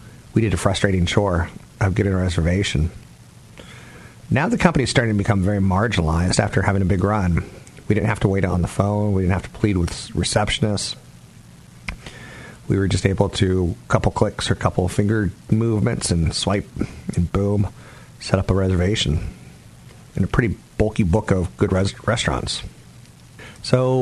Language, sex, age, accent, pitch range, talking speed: English, male, 40-59, American, 95-115 Hz, 175 wpm